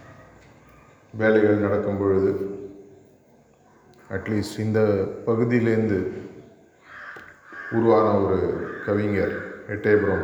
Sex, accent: male, native